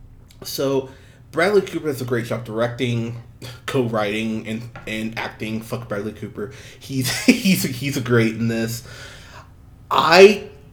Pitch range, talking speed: 115-130 Hz, 125 wpm